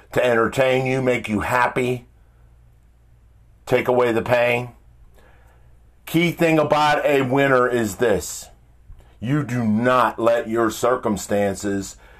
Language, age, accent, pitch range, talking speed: English, 50-69, American, 80-120 Hz, 115 wpm